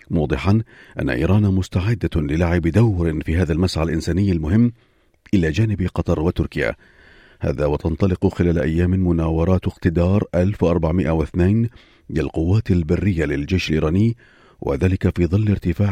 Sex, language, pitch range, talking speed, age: male, Arabic, 80-100 Hz, 115 wpm, 40-59